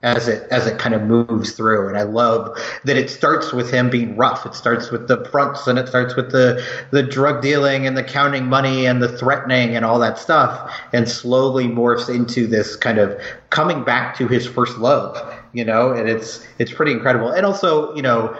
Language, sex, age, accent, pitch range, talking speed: English, male, 30-49, American, 115-130 Hz, 215 wpm